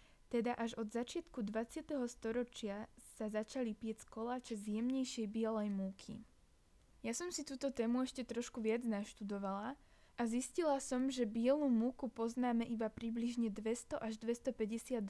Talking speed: 140 wpm